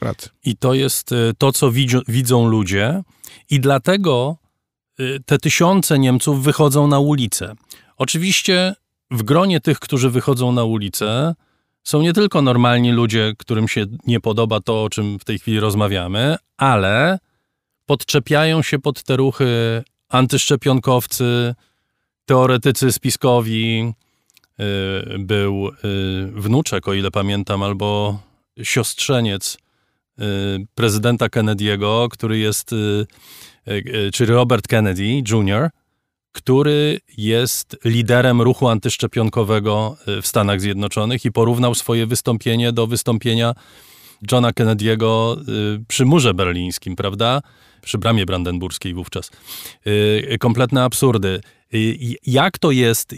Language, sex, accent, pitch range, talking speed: Polish, male, native, 105-130 Hz, 105 wpm